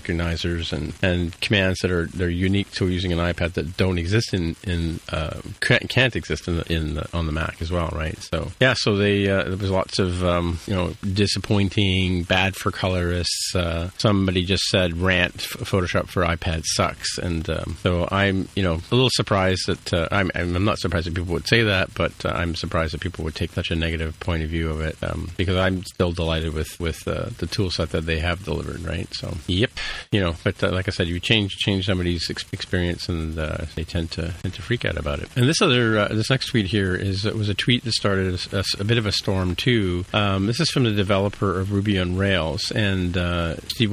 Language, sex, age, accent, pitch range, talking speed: English, male, 40-59, American, 85-105 Hz, 230 wpm